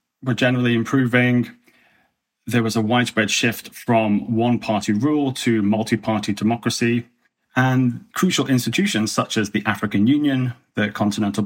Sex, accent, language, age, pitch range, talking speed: male, British, English, 30-49, 105-125 Hz, 125 wpm